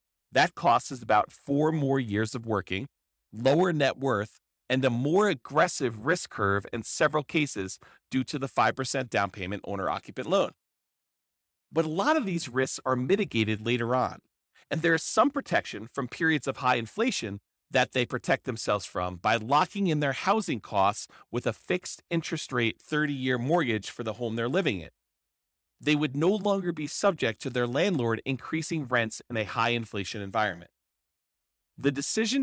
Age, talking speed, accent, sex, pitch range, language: 40-59, 170 wpm, American, male, 100-150 Hz, English